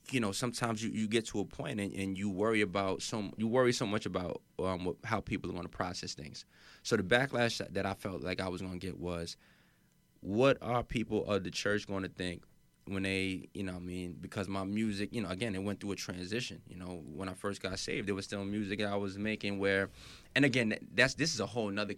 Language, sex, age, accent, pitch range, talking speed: English, male, 20-39, American, 90-105 Hz, 255 wpm